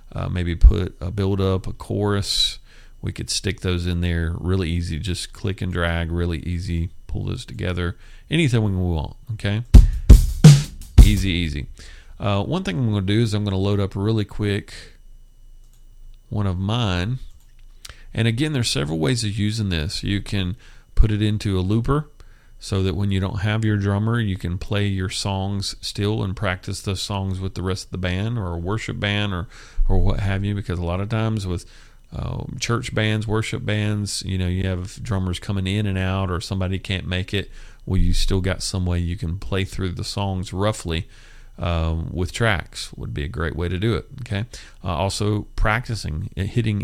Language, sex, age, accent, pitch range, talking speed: English, male, 40-59, American, 90-110 Hz, 195 wpm